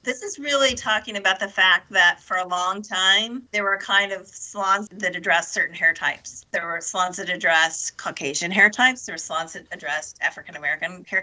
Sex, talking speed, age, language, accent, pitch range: female, 205 wpm, 40-59, English, American, 185-225 Hz